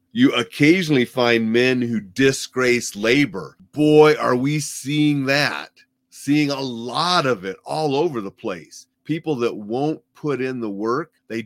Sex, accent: male, American